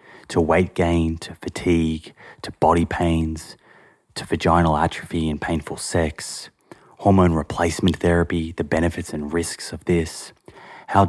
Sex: male